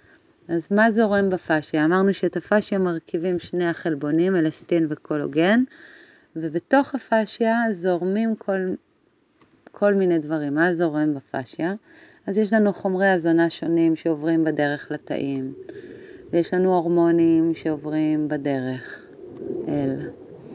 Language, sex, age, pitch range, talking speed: Hebrew, female, 40-59, 150-185 Hz, 110 wpm